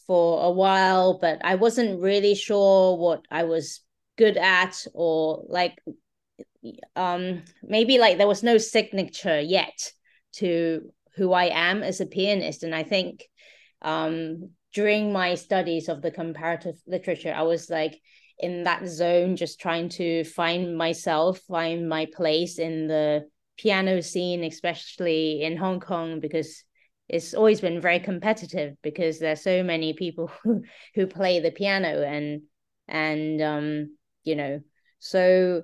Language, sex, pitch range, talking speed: English, female, 165-195 Hz, 145 wpm